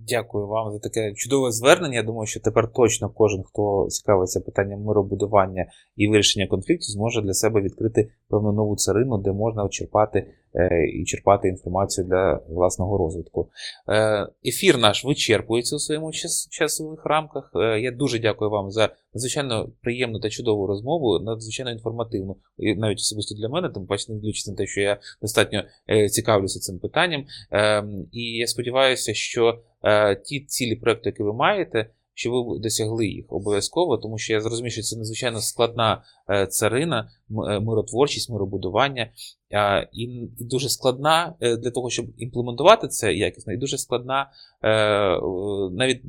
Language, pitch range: Ukrainian, 105-120 Hz